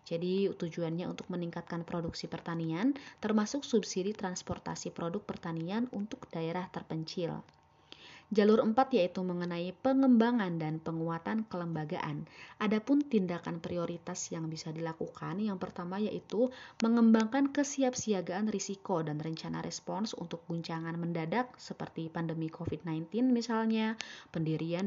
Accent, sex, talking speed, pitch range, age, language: native, female, 110 wpm, 165-225 Hz, 20-39, Indonesian